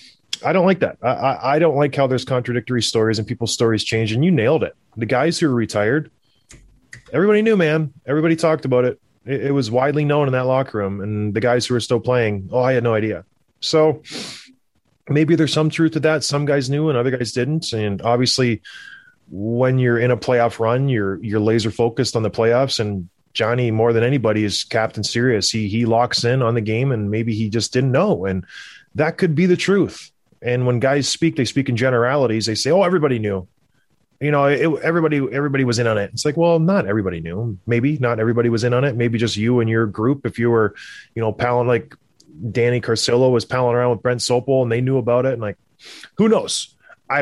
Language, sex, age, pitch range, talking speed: English, male, 20-39, 115-140 Hz, 220 wpm